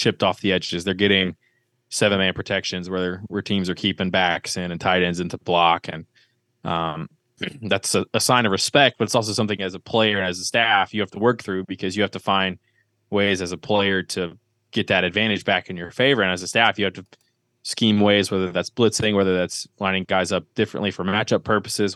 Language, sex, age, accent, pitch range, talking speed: English, male, 20-39, American, 95-115 Hz, 225 wpm